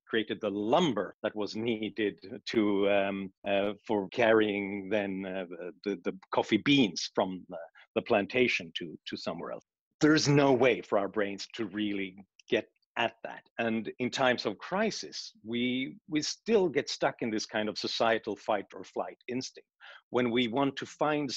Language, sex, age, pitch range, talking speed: English, male, 50-69, 105-140 Hz, 170 wpm